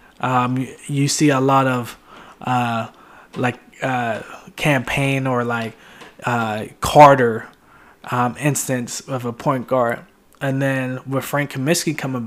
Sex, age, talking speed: male, 20-39, 125 wpm